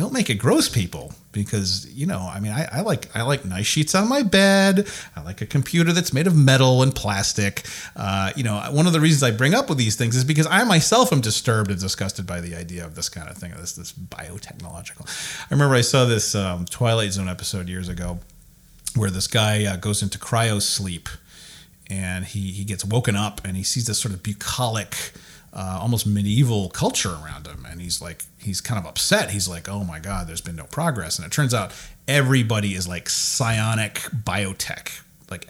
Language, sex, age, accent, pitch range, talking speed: English, male, 30-49, American, 90-120 Hz, 215 wpm